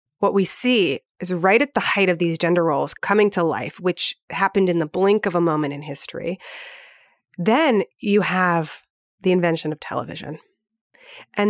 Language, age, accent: English, 30-49, American